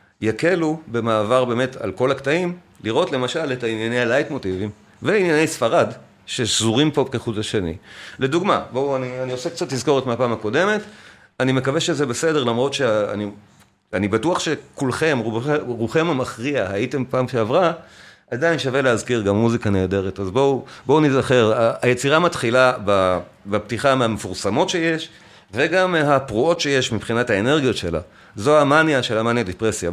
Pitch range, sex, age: 110-140 Hz, male, 40-59